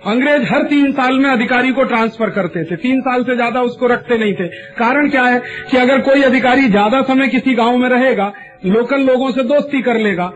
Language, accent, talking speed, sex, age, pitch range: Marathi, native, 170 wpm, male, 40-59, 220-260 Hz